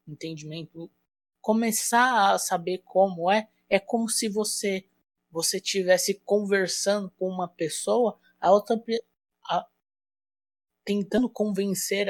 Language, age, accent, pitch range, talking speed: Portuguese, 20-39, Brazilian, 180-230 Hz, 105 wpm